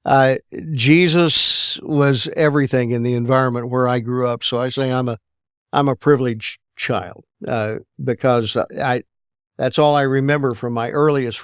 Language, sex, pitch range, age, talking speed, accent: English, male, 120-145 Hz, 50-69, 165 wpm, American